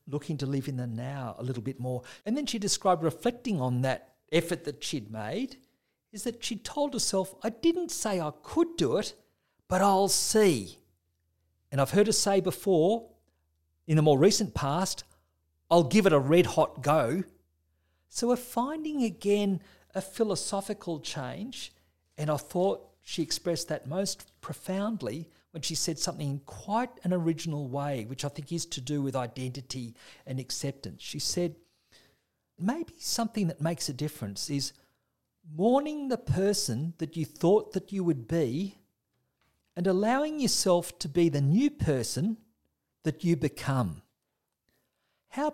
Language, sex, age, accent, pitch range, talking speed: English, male, 50-69, Australian, 140-200 Hz, 155 wpm